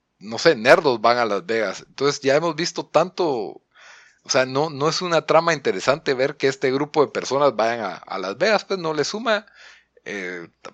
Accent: Mexican